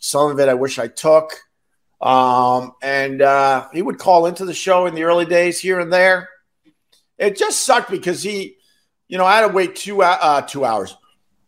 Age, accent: 50-69, American